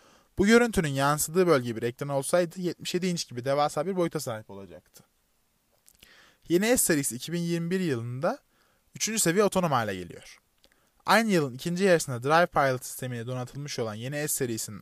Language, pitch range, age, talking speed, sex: Turkish, 120-165 Hz, 20-39, 140 wpm, male